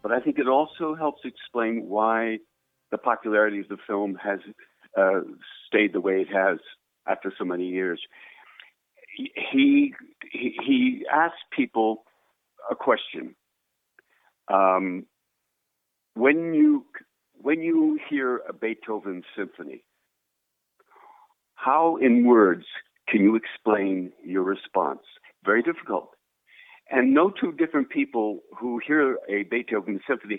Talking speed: 120 wpm